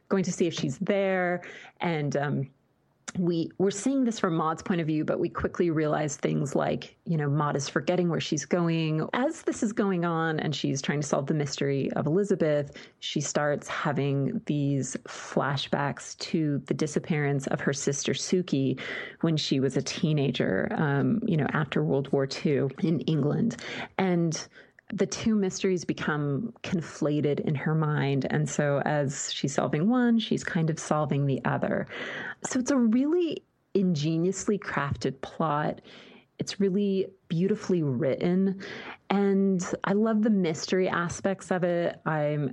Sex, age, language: female, 30-49, English